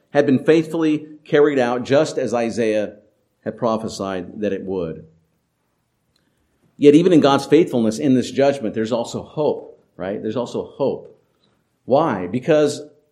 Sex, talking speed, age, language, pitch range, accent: male, 135 wpm, 50-69, English, 110-145 Hz, American